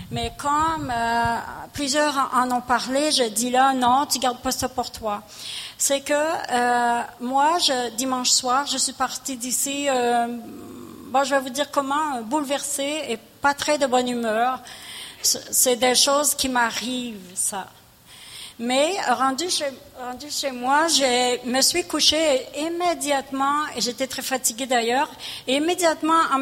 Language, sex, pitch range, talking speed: French, female, 245-290 Hz, 155 wpm